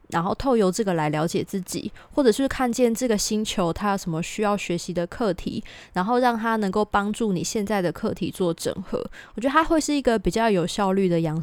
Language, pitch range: Chinese, 180-240 Hz